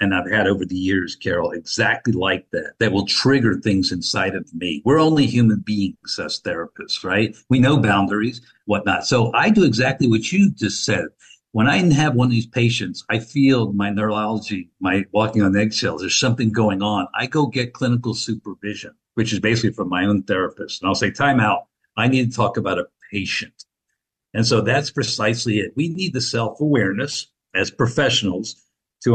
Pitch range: 105-130 Hz